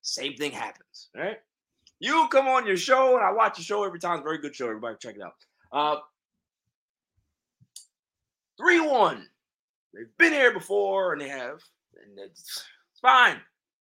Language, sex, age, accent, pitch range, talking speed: English, male, 20-39, American, 170-255 Hz, 170 wpm